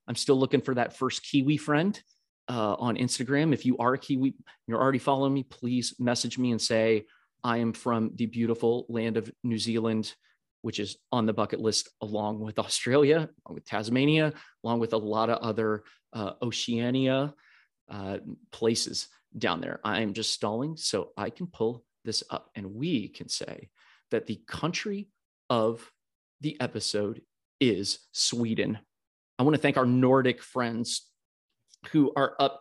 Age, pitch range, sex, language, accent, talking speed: 30-49, 115-140 Hz, male, English, American, 165 wpm